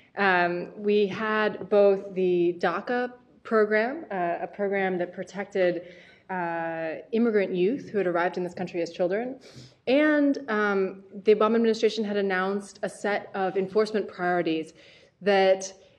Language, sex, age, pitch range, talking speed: English, female, 20-39, 170-205 Hz, 135 wpm